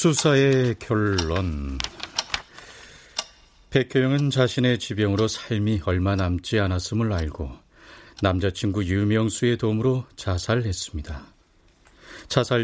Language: Korean